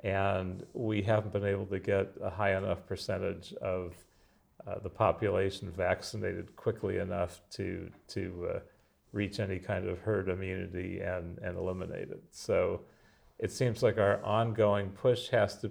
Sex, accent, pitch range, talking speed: male, American, 90-105 Hz, 155 wpm